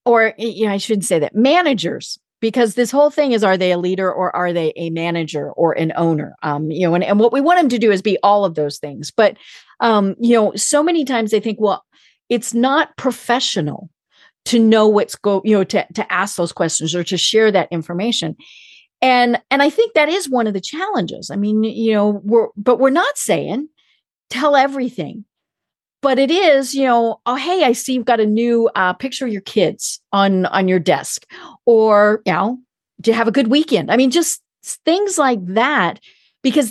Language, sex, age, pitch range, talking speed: English, female, 50-69, 190-260 Hz, 210 wpm